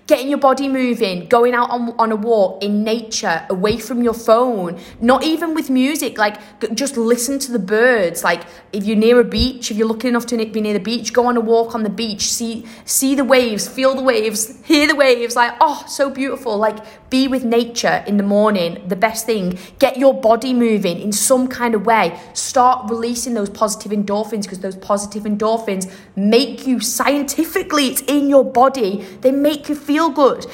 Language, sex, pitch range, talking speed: English, female, 200-255 Hz, 200 wpm